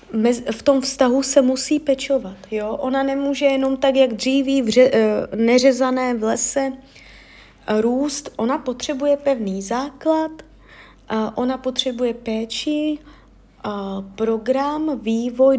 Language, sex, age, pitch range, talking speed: Czech, female, 30-49, 215-270 Hz, 100 wpm